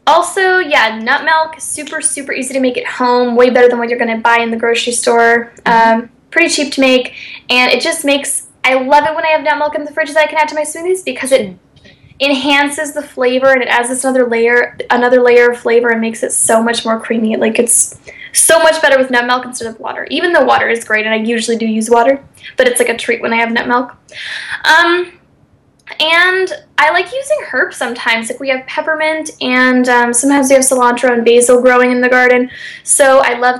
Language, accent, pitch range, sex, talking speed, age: English, American, 235-285 Hz, female, 230 wpm, 10-29